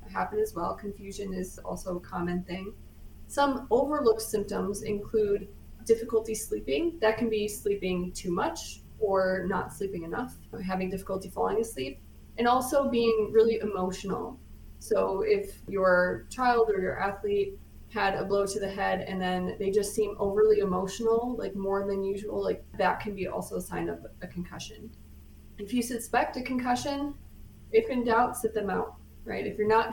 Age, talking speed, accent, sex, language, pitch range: 20-39, 170 wpm, American, female, English, 185-225 Hz